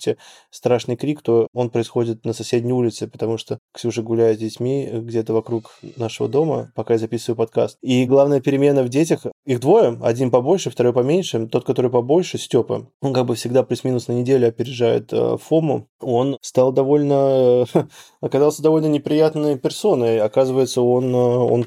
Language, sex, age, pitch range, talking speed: Russian, male, 20-39, 115-135 Hz, 155 wpm